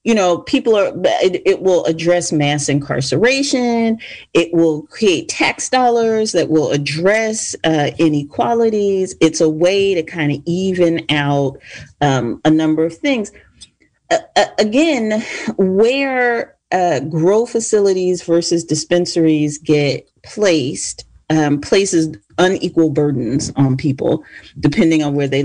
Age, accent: 40-59, American